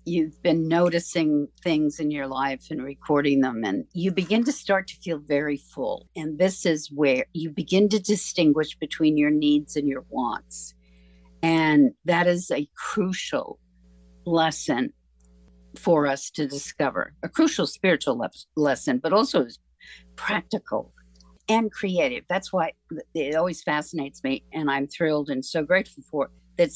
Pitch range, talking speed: 130-185 Hz, 150 wpm